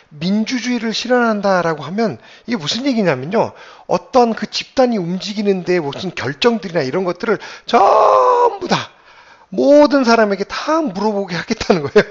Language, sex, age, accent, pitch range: Korean, male, 40-59, native, 170-240 Hz